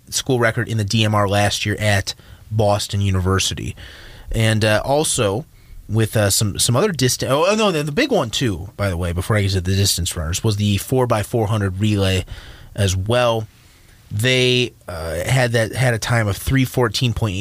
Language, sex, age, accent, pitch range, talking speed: English, male, 30-49, American, 100-125 Hz, 195 wpm